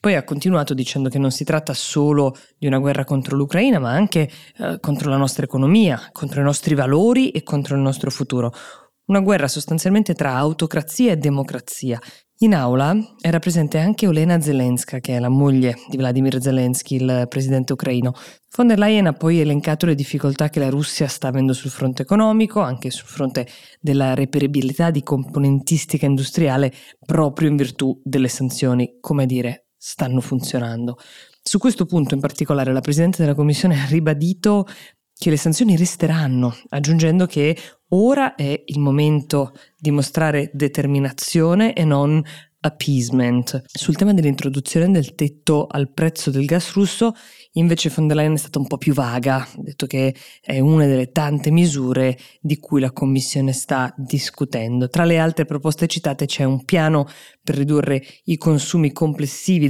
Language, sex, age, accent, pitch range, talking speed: Italian, female, 20-39, native, 135-165 Hz, 160 wpm